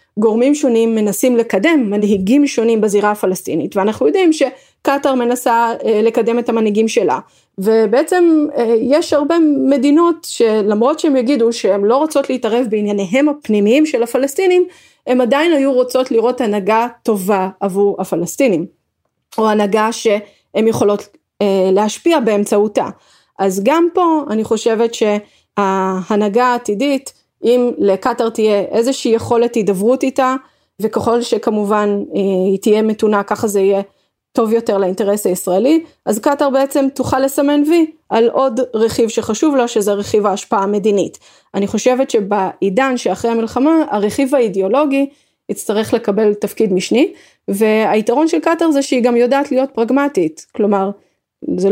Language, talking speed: Hebrew, 130 wpm